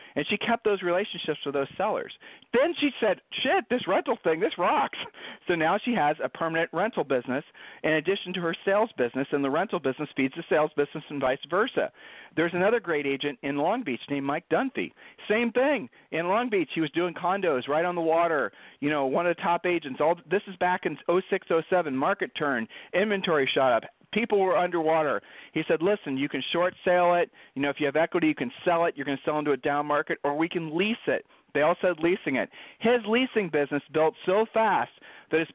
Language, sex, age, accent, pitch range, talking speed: English, male, 40-59, American, 145-185 Hz, 220 wpm